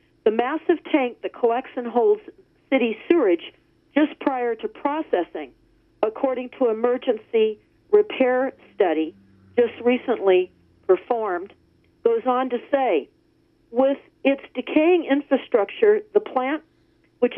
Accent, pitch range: American, 240-335 Hz